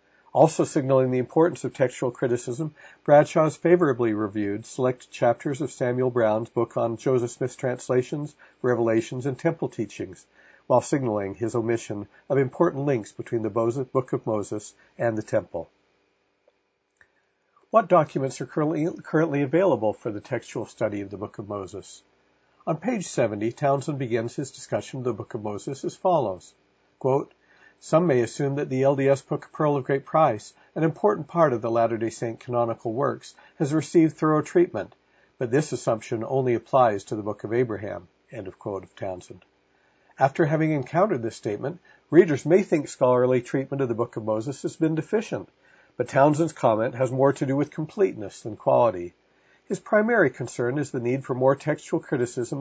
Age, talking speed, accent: 50-69, 165 wpm, American